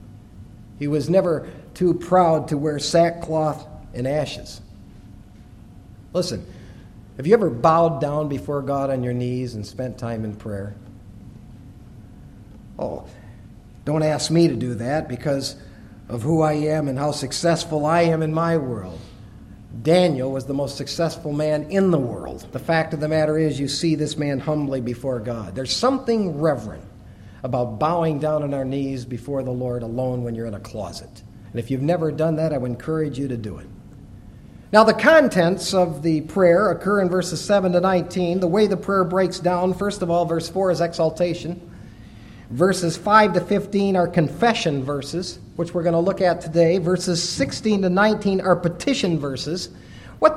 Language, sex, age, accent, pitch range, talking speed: English, male, 50-69, American, 120-180 Hz, 175 wpm